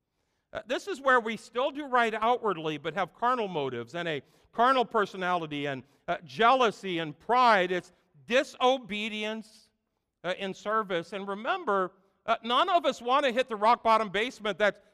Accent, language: American, English